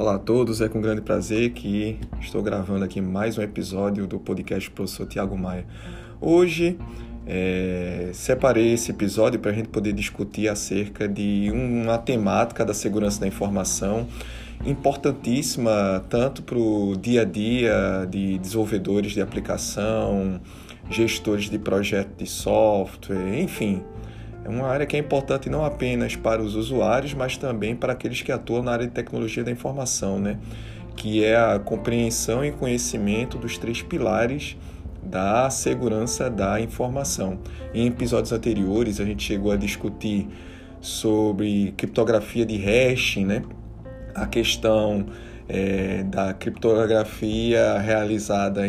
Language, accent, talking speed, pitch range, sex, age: Portuguese, Brazilian, 135 wpm, 100-115 Hz, male, 20-39